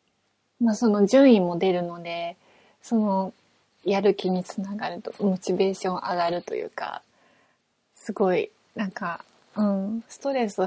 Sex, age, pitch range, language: female, 20-39, 185-230 Hz, Japanese